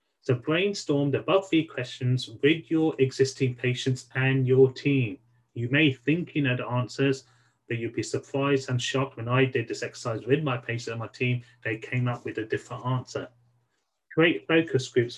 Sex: male